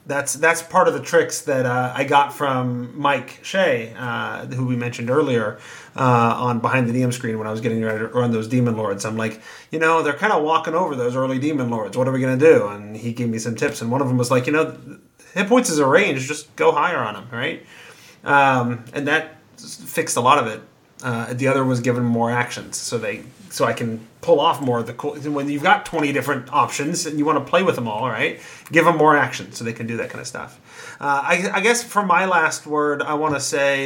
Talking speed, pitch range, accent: 255 wpm, 125-155 Hz, American